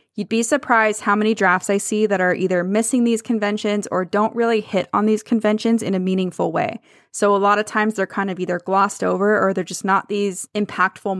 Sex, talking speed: female, 225 wpm